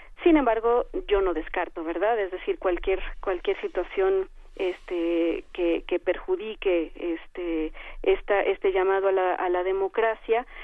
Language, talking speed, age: Spanish, 135 wpm, 40-59